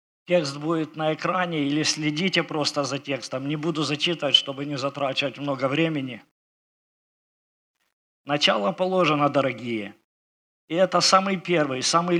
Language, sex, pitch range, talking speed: Ukrainian, male, 140-175 Hz, 125 wpm